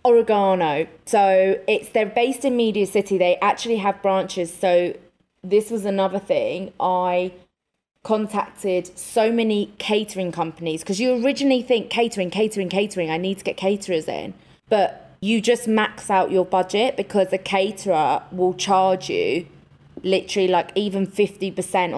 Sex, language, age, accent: female, English, 20-39, British